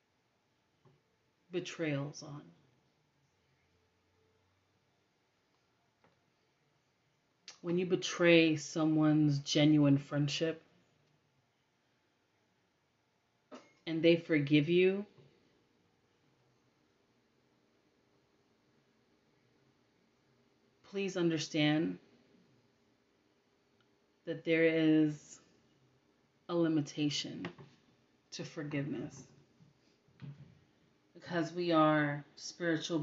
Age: 30-49